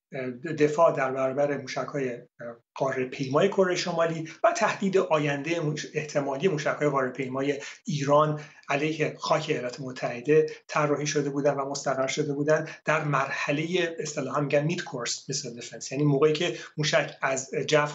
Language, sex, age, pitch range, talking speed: Persian, male, 30-49, 140-160 Hz, 135 wpm